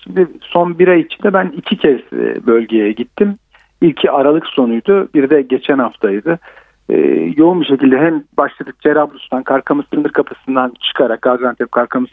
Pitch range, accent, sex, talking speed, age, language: 135-175 Hz, native, male, 150 wpm, 50-69, Turkish